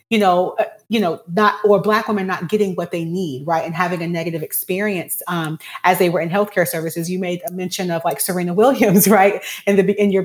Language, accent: English, American